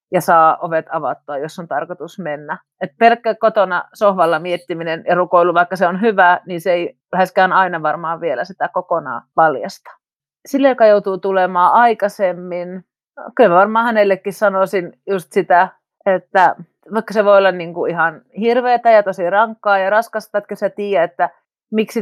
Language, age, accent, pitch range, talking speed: Finnish, 30-49, native, 175-205 Hz, 160 wpm